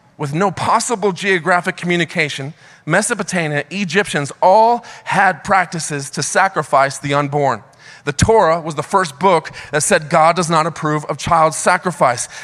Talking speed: 140 wpm